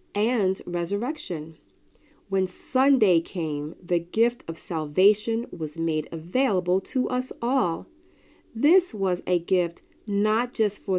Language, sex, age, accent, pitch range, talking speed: English, female, 40-59, American, 175-220 Hz, 120 wpm